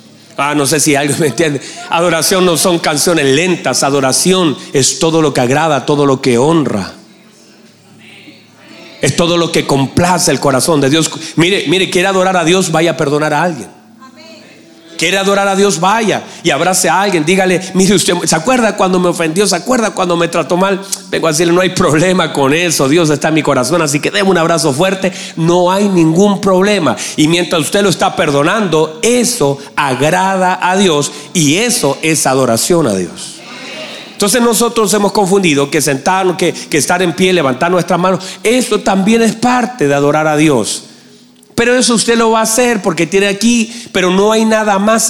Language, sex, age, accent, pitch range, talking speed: Spanish, male, 40-59, Mexican, 145-190 Hz, 185 wpm